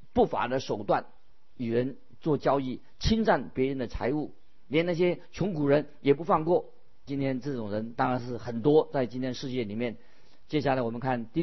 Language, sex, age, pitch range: Chinese, male, 50-69, 125-175 Hz